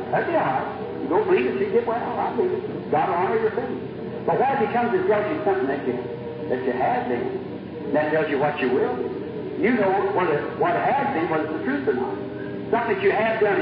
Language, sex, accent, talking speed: English, male, American, 250 wpm